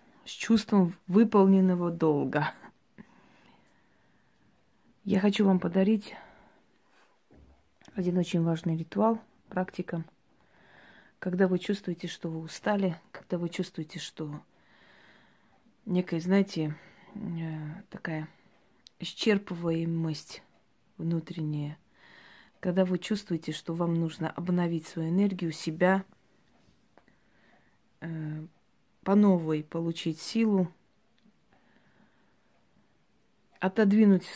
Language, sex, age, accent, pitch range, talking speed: Russian, female, 30-49, native, 165-195 Hz, 75 wpm